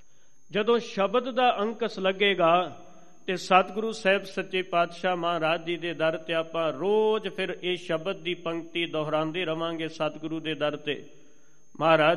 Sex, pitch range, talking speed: male, 160-190 Hz, 145 wpm